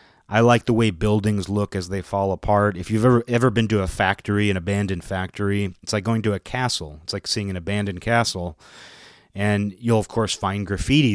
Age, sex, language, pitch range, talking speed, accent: 30-49, male, English, 95-115 Hz, 210 wpm, American